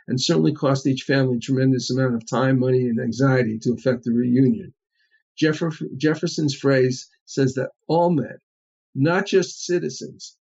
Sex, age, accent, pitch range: male, 50-69, American, 130-160 Hz